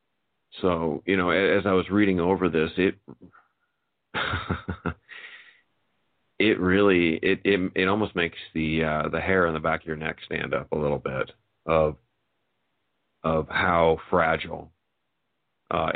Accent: American